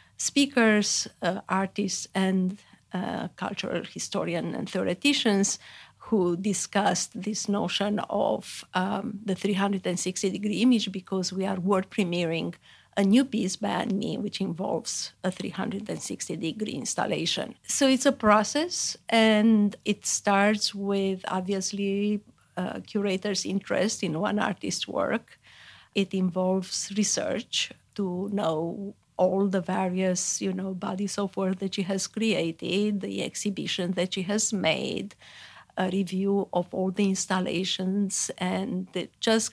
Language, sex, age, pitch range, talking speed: English, female, 50-69, 185-210 Hz, 120 wpm